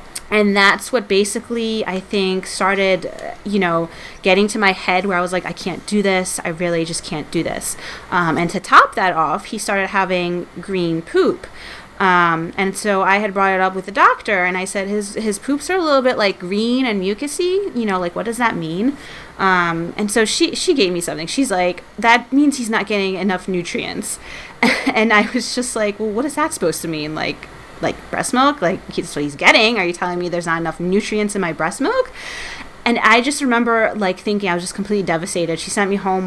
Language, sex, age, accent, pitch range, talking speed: English, female, 30-49, American, 175-215 Hz, 225 wpm